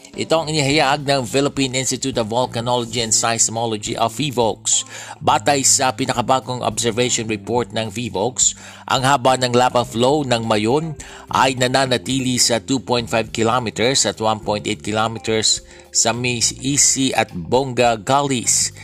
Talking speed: 120 wpm